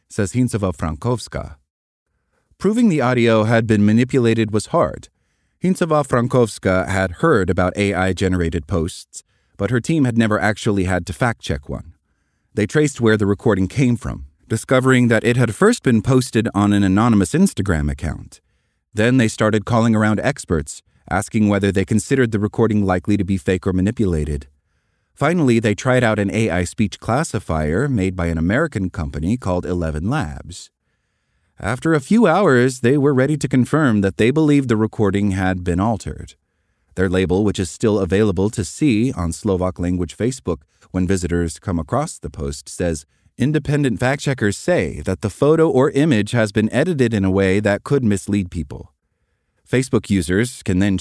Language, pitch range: English, 90-120 Hz